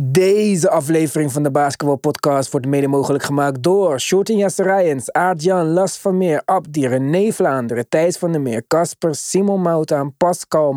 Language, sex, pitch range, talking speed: Dutch, male, 145-195 Hz, 150 wpm